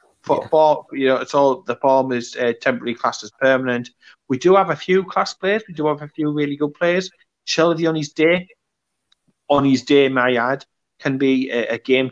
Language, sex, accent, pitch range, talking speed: English, male, British, 125-150 Hz, 205 wpm